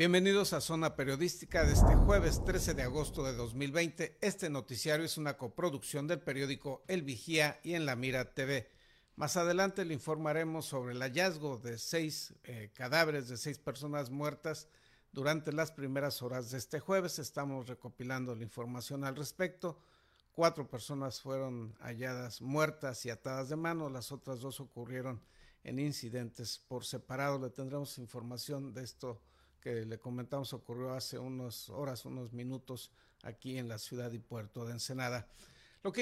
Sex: male